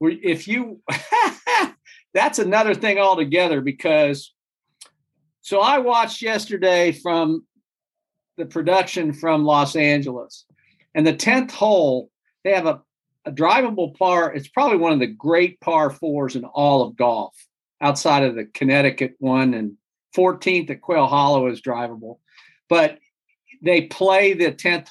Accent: American